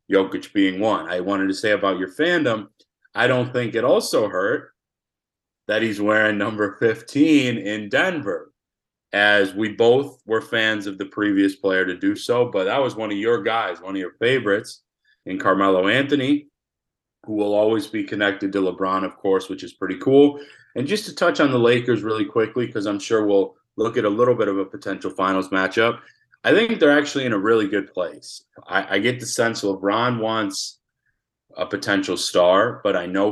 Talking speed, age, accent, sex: 195 wpm, 30-49, American, male